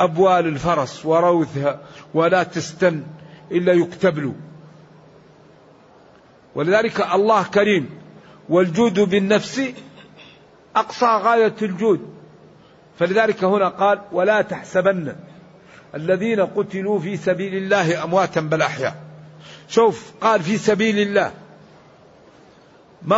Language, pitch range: Arabic, 175-210 Hz